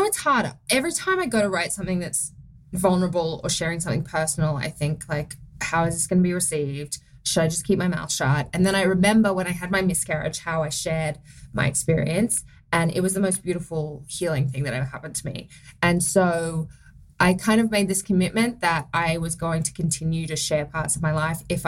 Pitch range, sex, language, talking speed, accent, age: 160-215 Hz, female, English, 220 wpm, Australian, 20-39